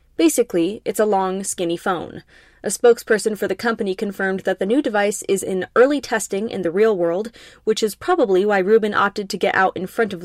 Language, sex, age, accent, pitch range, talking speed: English, female, 20-39, American, 195-235 Hz, 210 wpm